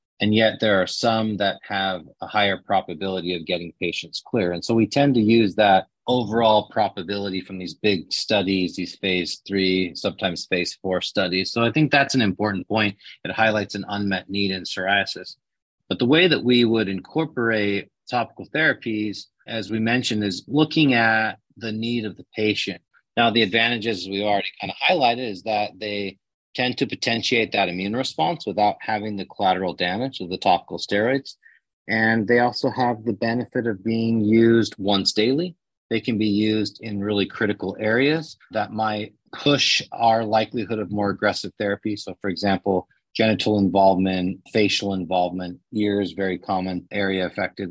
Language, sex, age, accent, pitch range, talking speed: English, male, 30-49, American, 95-115 Hz, 170 wpm